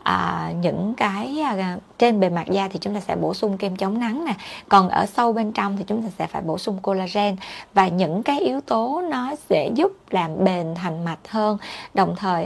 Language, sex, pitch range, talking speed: Vietnamese, female, 185-240 Hz, 220 wpm